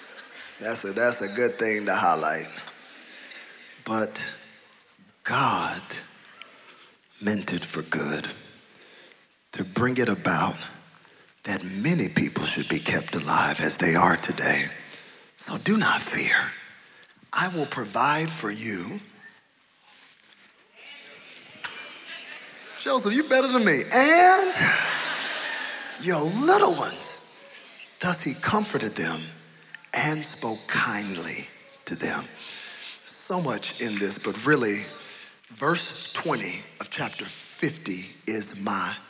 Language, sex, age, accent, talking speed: English, male, 40-59, American, 105 wpm